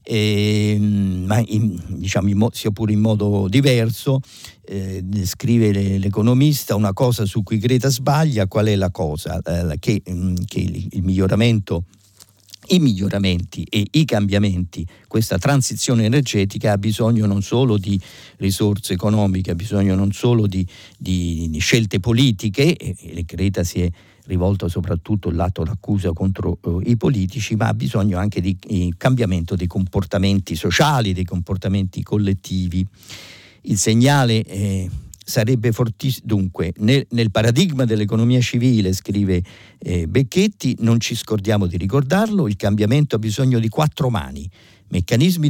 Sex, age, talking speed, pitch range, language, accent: male, 50-69, 135 wpm, 95-120 Hz, Italian, native